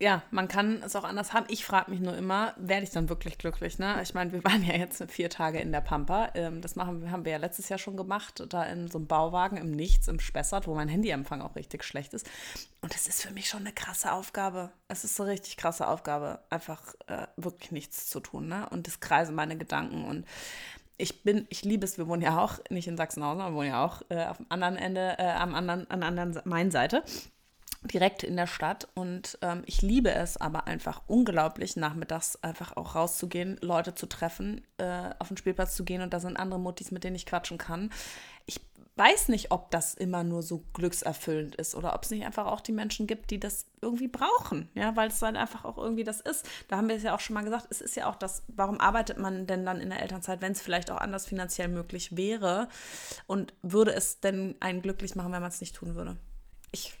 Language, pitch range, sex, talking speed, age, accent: German, 170-200 Hz, female, 235 wpm, 20-39, German